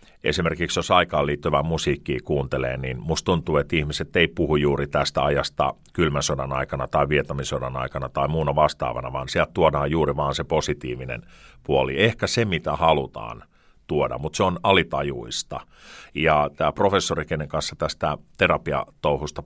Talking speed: 150 wpm